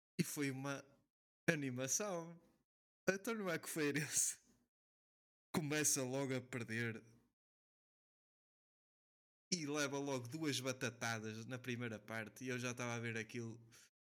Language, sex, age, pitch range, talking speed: Portuguese, male, 20-39, 115-135 Hz, 125 wpm